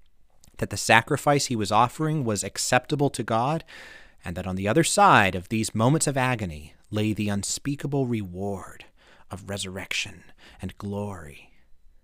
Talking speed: 145 wpm